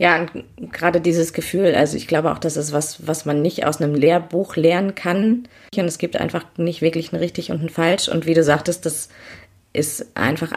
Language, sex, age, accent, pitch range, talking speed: German, female, 30-49, German, 145-170 Hz, 210 wpm